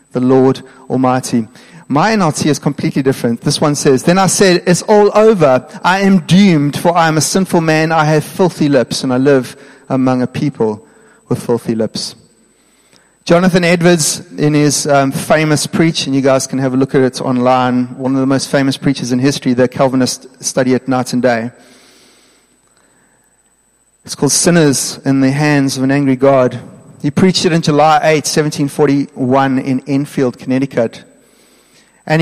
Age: 30-49